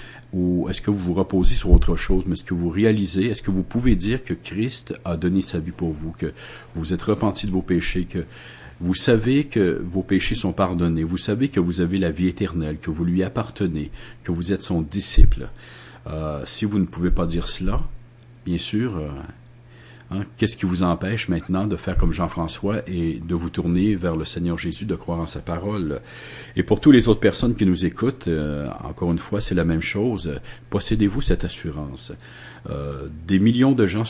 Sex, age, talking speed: male, 50-69, 205 wpm